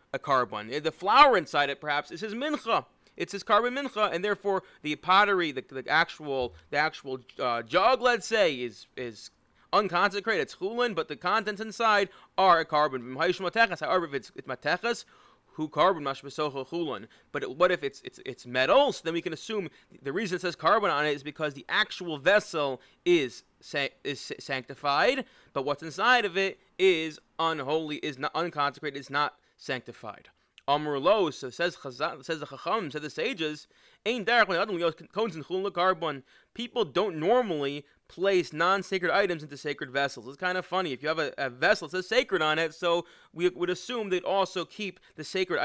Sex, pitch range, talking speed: male, 145-195 Hz, 175 wpm